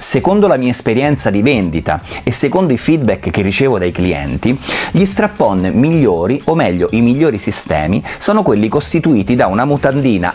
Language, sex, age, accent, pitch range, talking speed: Italian, male, 30-49, native, 100-145 Hz, 160 wpm